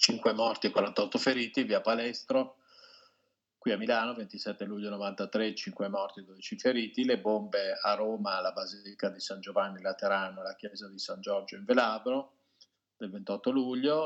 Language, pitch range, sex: Italian, 100-125 Hz, male